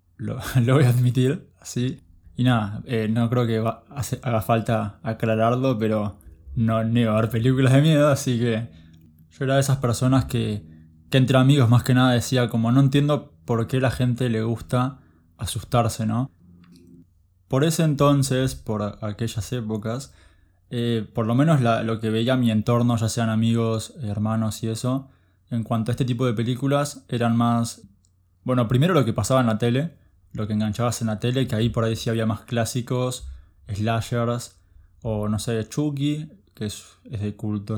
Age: 20-39